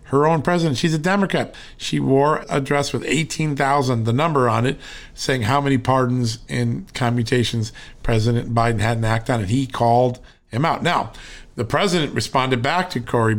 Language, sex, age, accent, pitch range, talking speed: English, male, 50-69, American, 120-150 Hz, 180 wpm